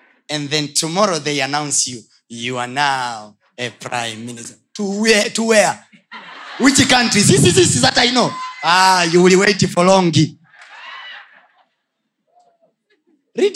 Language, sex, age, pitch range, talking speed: Swahili, male, 30-49, 150-230 Hz, 135 wpm